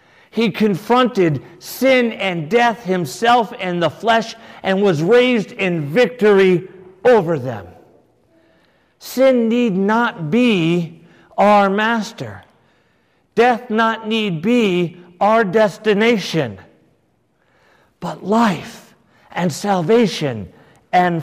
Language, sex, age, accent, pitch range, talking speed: English, male, 50-69, American, 140-220 Hz, 95 wpm